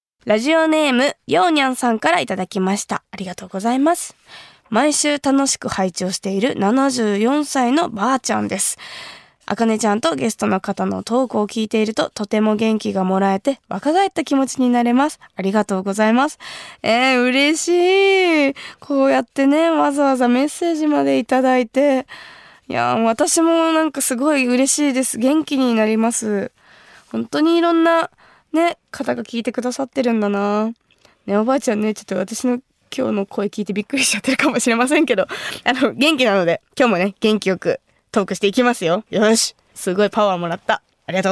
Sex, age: female, 20-39